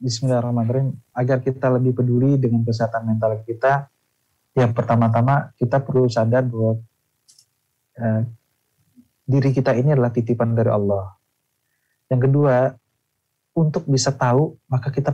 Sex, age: male, 30-49